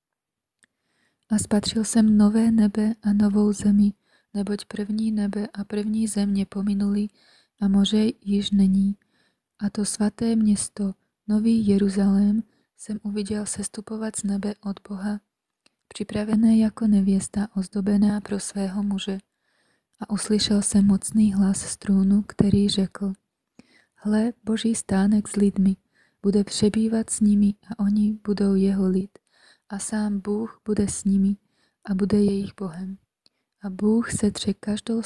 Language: Czech